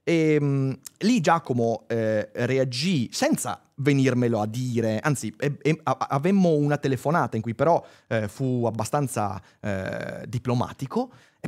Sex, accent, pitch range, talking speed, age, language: male, native, 115-150 Hz, 115 wpm, 30-49, Italian